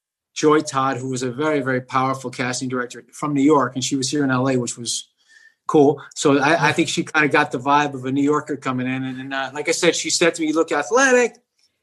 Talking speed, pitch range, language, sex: 260 wpm, 140-175 Hz, English, male